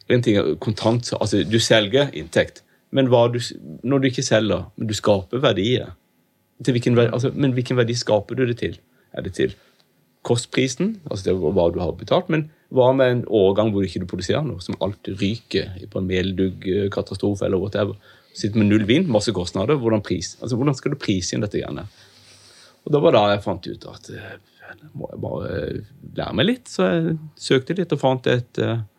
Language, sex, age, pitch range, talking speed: English, male, 30-49, 100-125 Hz, 180 wpm